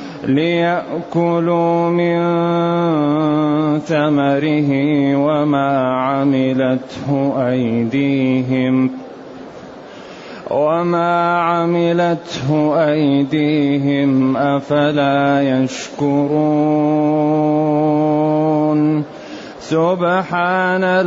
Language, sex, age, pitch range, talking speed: Arabic, male, 30-49, 155-185 Hz, 35 wpm